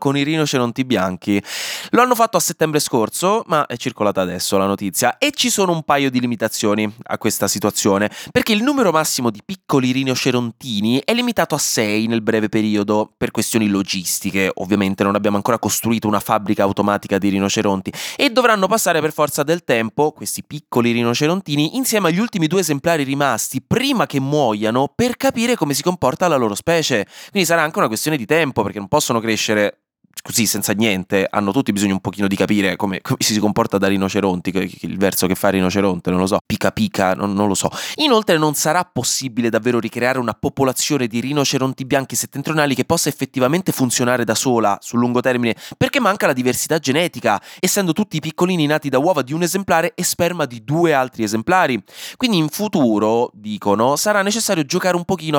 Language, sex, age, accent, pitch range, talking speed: Italian, male, 20-39, native, 105-160 Hz, 185 wpm